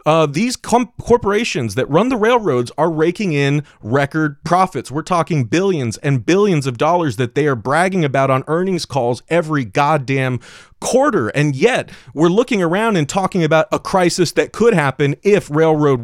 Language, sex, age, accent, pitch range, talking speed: English, male, 30-49, American, 135-180 Hz, 170 wpm